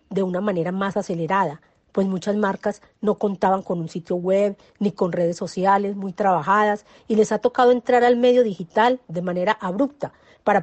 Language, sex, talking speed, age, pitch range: Spanish, female, 180 wpm, 40-59, 180-235 Hz